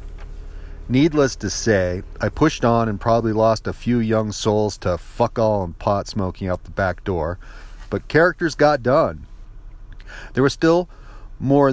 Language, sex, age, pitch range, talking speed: English, male, 40-59, 90-120 Hz, 150 wpm